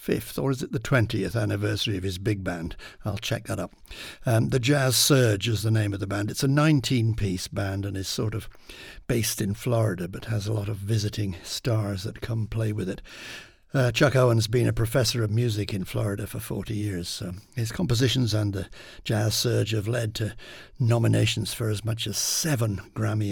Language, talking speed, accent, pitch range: English, 200 wpm, British, 100-115 Hz